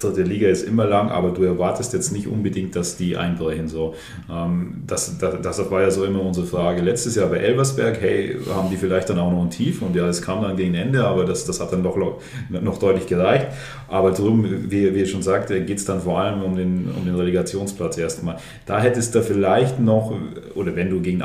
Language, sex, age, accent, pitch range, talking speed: German, male, 30-49, German, 95-110 Hz, 225 wpm